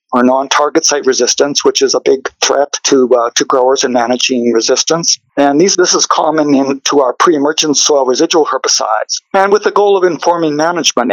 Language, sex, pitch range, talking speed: English, male, 135-170 Hz, 190 wpm